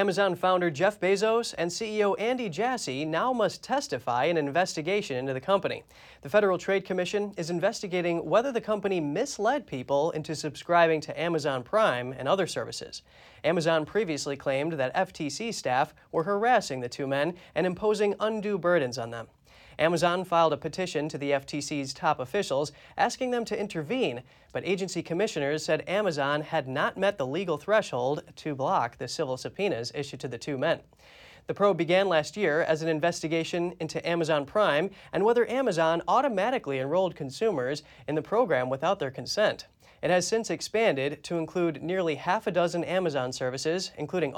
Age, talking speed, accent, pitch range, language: 30-49, 165 wpm, American, 150-195 Hz, English